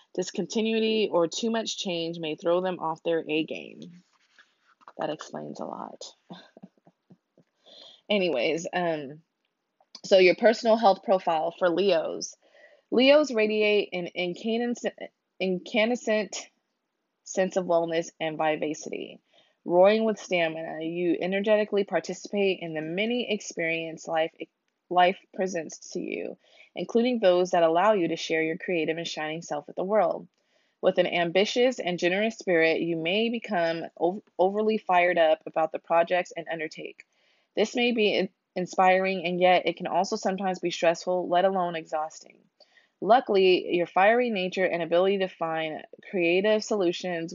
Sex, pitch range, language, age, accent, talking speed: female, 165-205 Hz, English, 20-39, American, 135 wpm